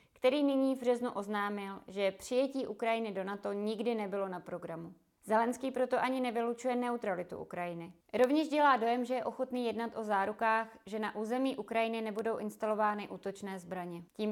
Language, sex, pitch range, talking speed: Czech, female, 195-225 Hz, 155 wpm